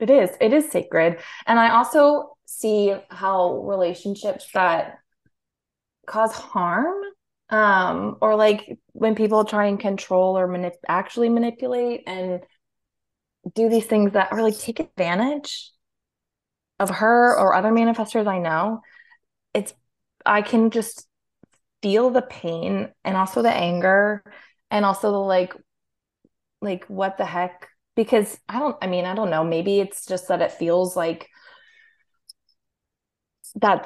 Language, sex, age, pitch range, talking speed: English, female, 20-39, 175-225 Hz, 135 wpm